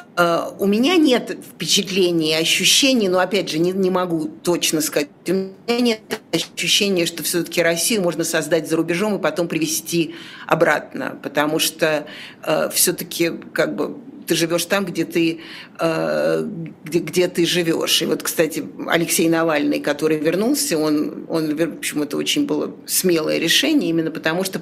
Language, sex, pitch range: Russian, female, 155-185 Hz